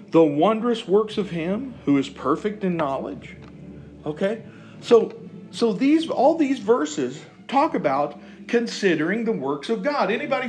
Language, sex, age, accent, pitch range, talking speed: English, male, 50-69, American, 175-240 Hz, 145 wpm